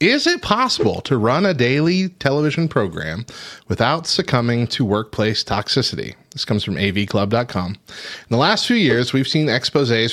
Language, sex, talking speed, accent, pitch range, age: English, male, 155 wpm, American, 105-135 Hz, 30-49